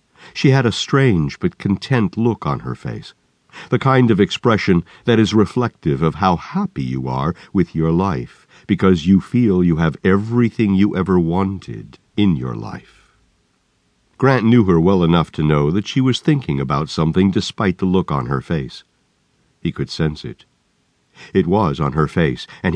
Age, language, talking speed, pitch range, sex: 60-79, English, 175 wpm, 80-120 Hz, male